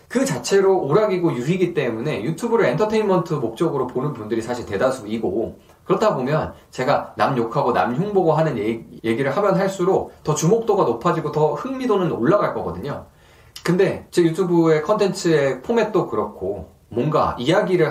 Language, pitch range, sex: Korean, 135-195 Hz, male